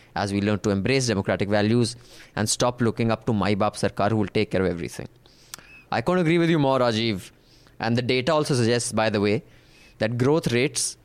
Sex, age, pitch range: male, 20-39, 105-130 Hz